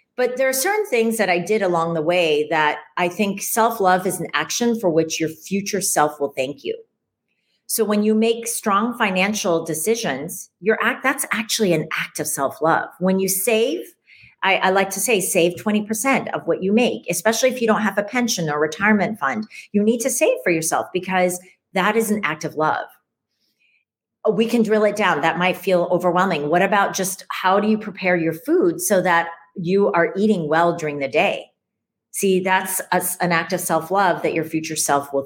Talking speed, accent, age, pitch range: 200 wpm, American, 40-59, 170-225 Hz